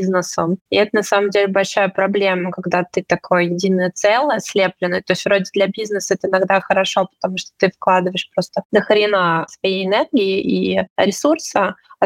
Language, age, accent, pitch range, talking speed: Russian, 20-39, native, 185-205 Hz, 165 wpm